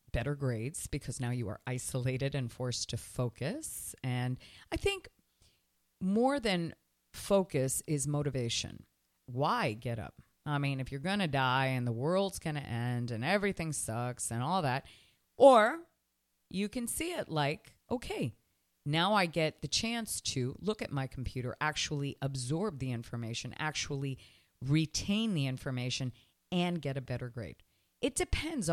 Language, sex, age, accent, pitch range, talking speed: English, female, 40-59, American, 125-180 Hz, 155 wpm